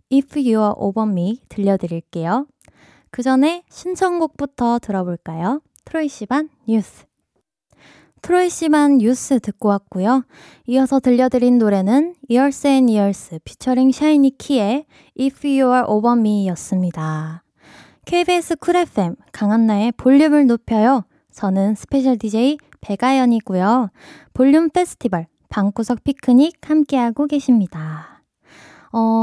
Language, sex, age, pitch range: Korean, female, 20-39, 205-280 Hz